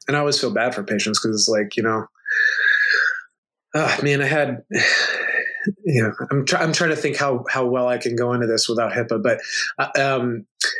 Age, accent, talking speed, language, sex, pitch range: 30-49, American, 205 wpm, English, male, 120-160 Hz